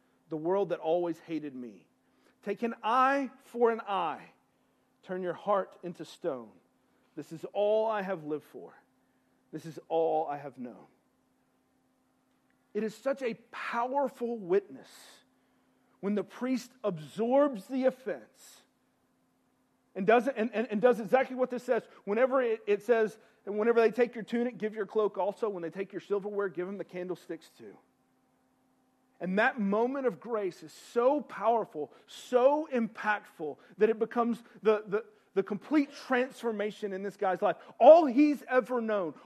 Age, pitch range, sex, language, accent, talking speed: 40-59, 190-250 Hz, male, English, American, 155 wpm